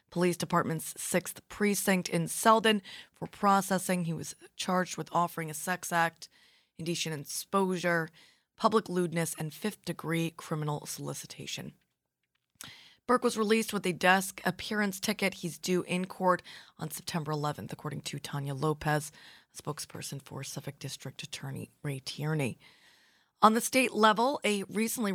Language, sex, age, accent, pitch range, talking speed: English, female, 20-39, American, 160-195 Hz, 135 wpm